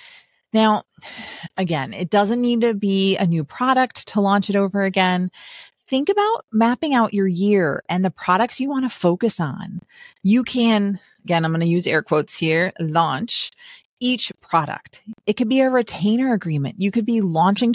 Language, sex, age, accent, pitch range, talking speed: English, female, 30-49, American, 170-230 Hz, 175 wpm